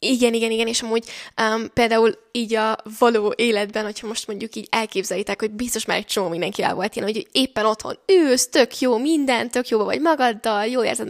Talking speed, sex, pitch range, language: 205 wpm, female, 210-250 Hz, Hungarian